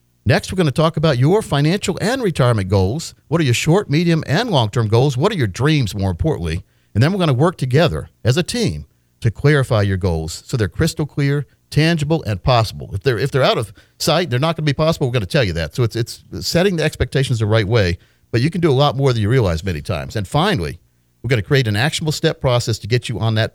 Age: 50-69